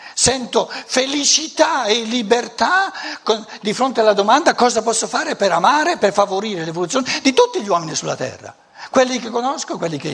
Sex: male